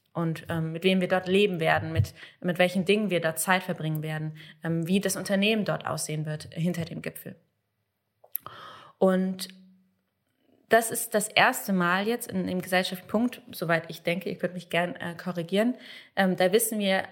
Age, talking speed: 20-39, 180 wpm